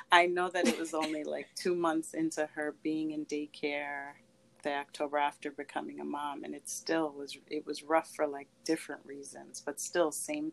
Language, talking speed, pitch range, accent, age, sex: English, 195 wpm, 145-170 Hz, American, 30-49, female